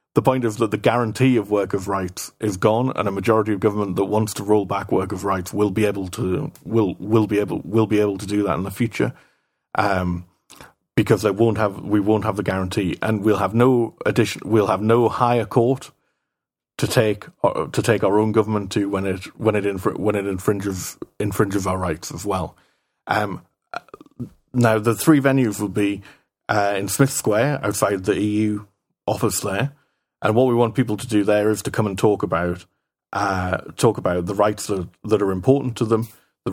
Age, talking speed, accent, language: 40-59, 210 wpm, British, English